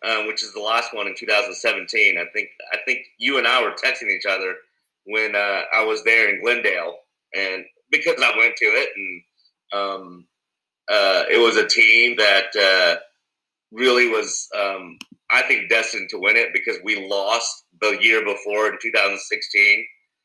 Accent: American